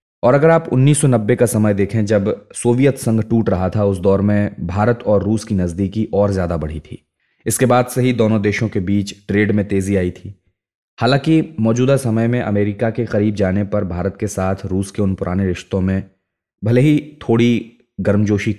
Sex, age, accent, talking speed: male, 30-49, native, 195 wpm